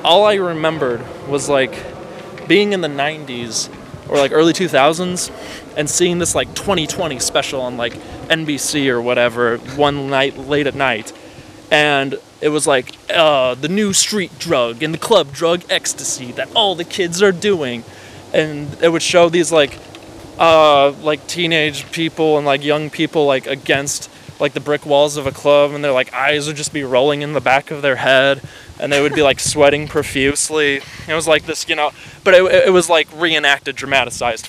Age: 20-39